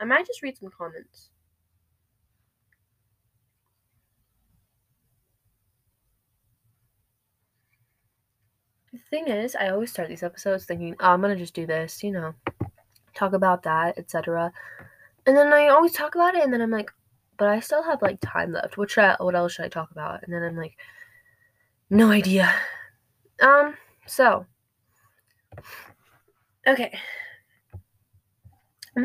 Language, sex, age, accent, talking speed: English, female, 20-39, American, 130 wpm